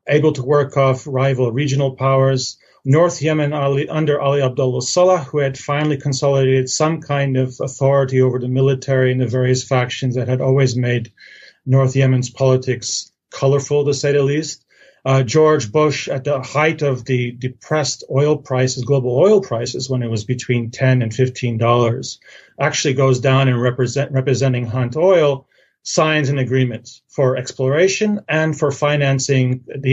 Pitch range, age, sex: 130-145 Hz, 40-59, male